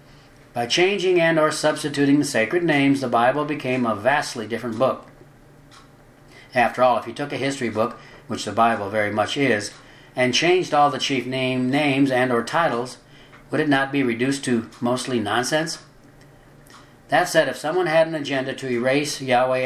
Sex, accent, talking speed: male, American, 175 wpm